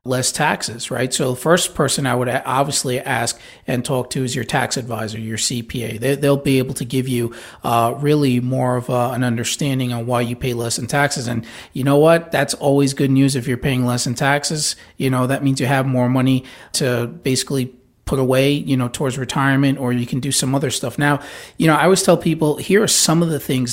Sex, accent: male, American